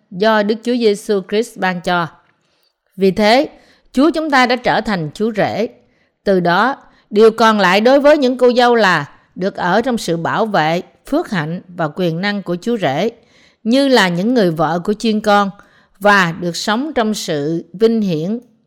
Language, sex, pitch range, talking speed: Vietnamese, female, 175-235 Hz, 185 wpm